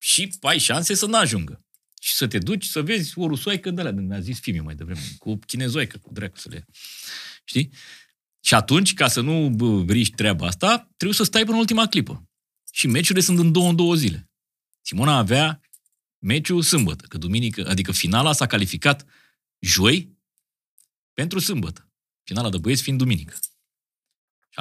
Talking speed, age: 165 wpm, 30-49